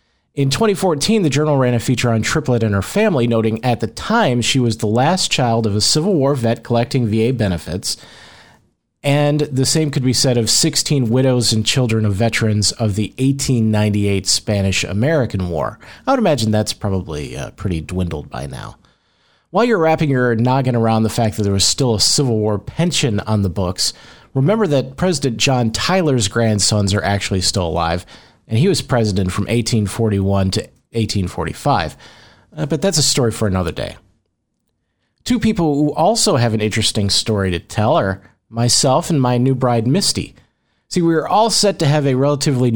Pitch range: 105-140 Hz